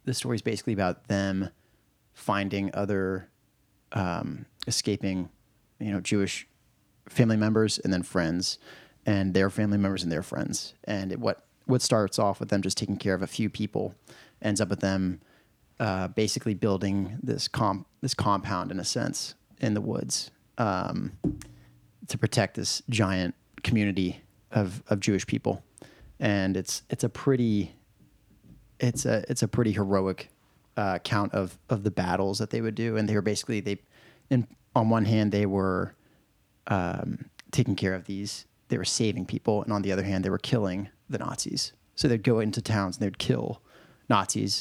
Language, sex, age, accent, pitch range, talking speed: English, male, 30-49, American, 95-110 Hz, 170 wpm